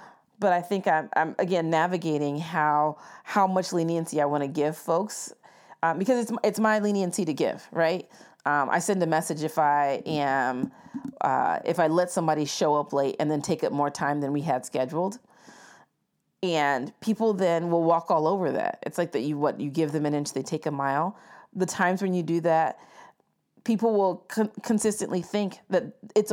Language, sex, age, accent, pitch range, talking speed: English, female, 30-49, American, 150-190 Hz, 195 wpm